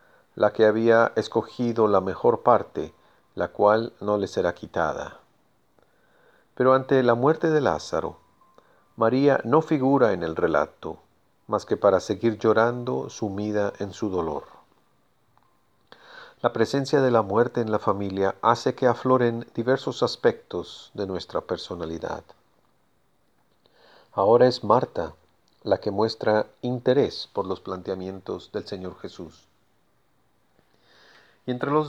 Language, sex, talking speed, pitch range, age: Spanish, male, 125 wpm, 100-125 Hz, 40-59